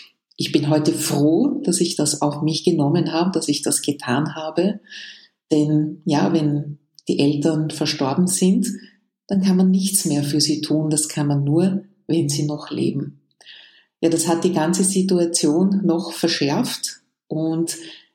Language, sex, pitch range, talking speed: German, female, 150-185 Hz, 160 wpm